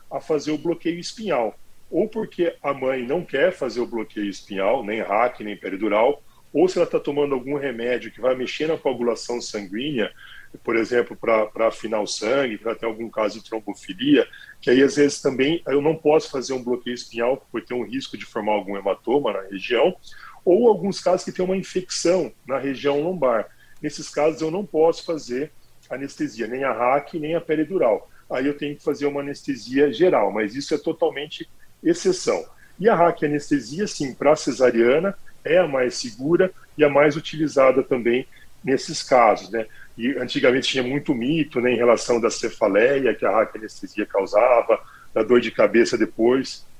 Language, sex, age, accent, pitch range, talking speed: Portuguese, male, 40-59, Brazilian, 125-165 Hz, 180 wpm